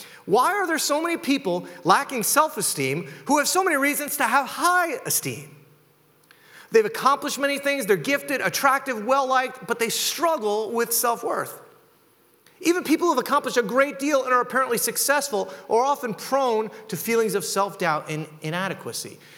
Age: 30-49